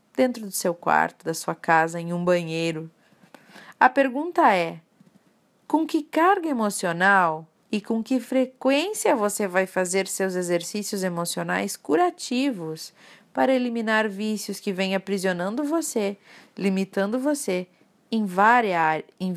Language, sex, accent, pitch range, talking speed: Portuguese, female, Brazilian, 185-245 Hz, 125 wpm